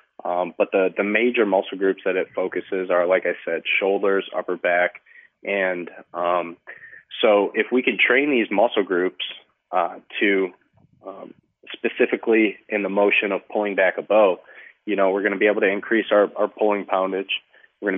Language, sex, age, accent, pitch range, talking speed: English, male, 20-39, American, 90-100 Hz, 180 wpm